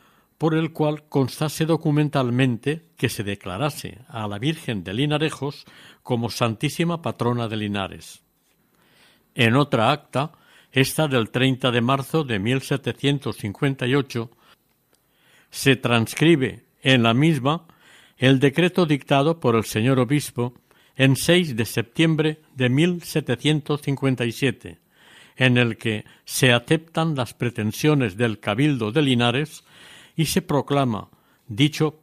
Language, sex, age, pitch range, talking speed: Spanish, male, 60-79, 120-150 Hz, 115 wpm